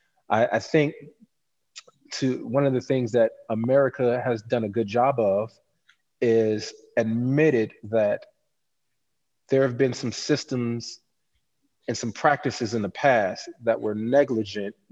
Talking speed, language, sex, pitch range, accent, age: 130 wpm, English, male, 115-145 Hz, American, 30-49